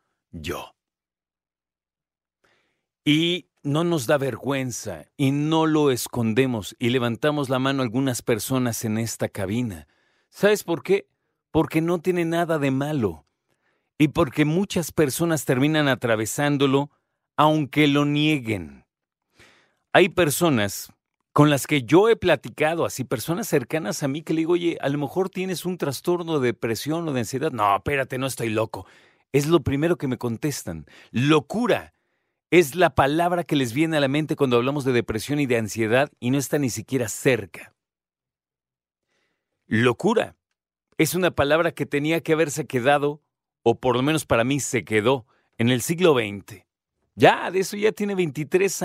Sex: male